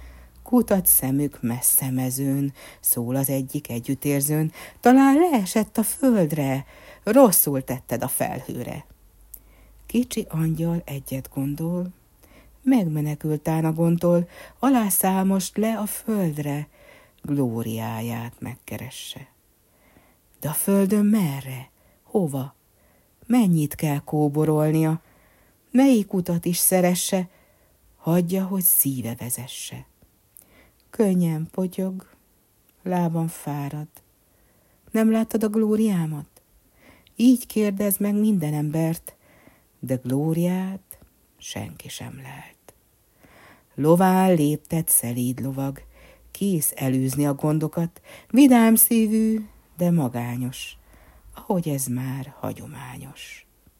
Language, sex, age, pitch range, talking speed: Hungarian, female, 60-79, 130-190 Hz, 90 wpm